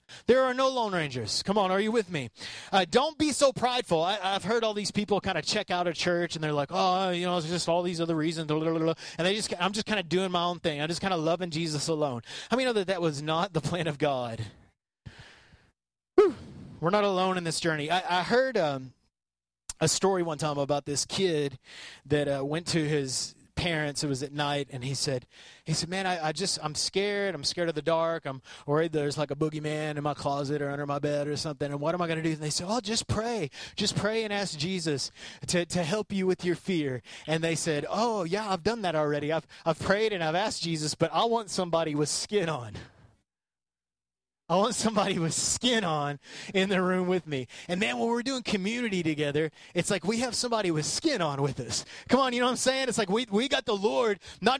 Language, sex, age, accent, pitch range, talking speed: English, male, 30-49, American, 150-210 Hz, 240 wpm